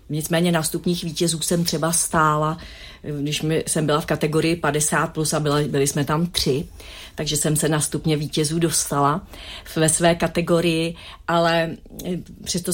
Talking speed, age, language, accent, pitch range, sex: 140 wpm, 40-59, Czech, native, 160-195 Hz, female